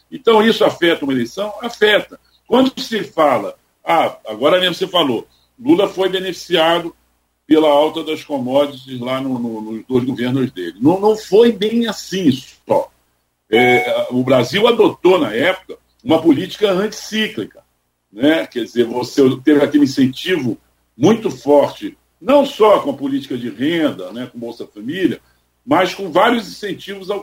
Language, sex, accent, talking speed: Portuguese, male, Brazilian, 150 wpm